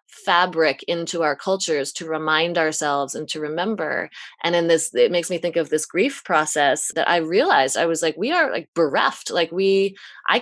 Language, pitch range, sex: English, 160-195 Hz, female